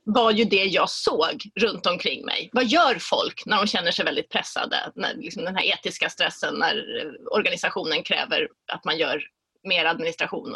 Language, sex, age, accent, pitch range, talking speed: Swedish, female, 30-49, native, 220-285 Hz, 175 wpm